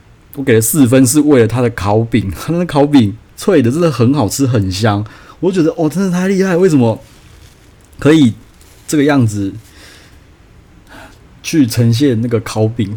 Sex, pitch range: male, 105-130 Hz